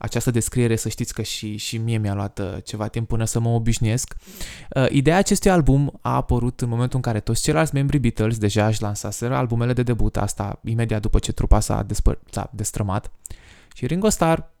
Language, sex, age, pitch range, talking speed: Romanian, male, 20-39, 110-145 Hz, 195 wpm